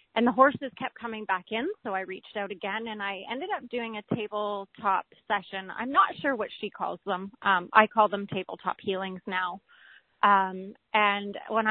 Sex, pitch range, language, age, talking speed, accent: female, 200-240 Hz, English, 30-49, 190 wpm, American